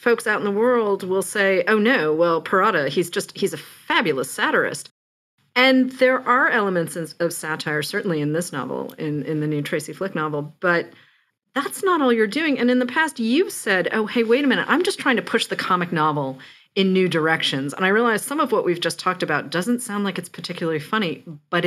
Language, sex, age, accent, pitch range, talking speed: English, female, 40-59, American, 160-215 Hz, 220 wpm